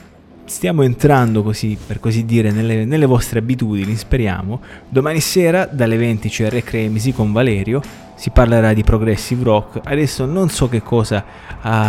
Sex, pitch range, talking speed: male, 110-130 Hz, 150 wpm